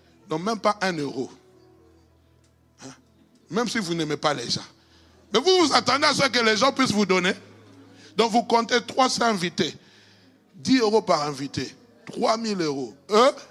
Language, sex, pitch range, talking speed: French, male, 155-215 Hz, 165 wpm